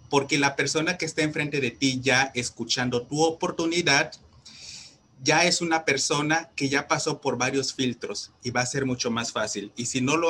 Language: Spanish